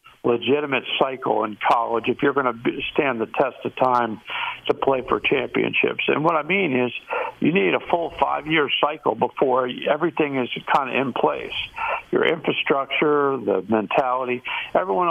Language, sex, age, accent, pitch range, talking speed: English, male, 60-79, American, 125-160 Hz, 160 wpm